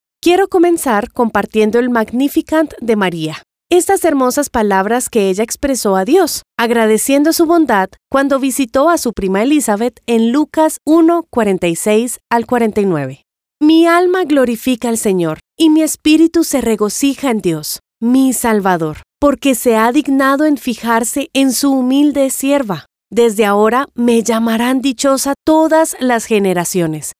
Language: Spanish